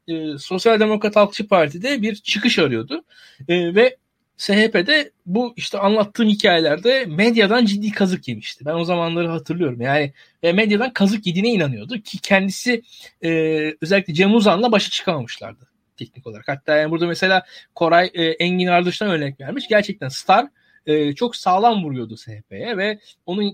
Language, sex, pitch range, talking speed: Turkish, male, 160-230 Hz, 150 wpm